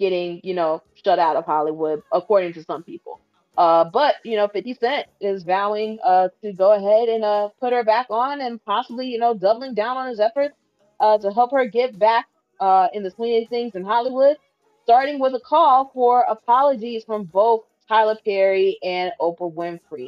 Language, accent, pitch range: English, American, 185-235 Hz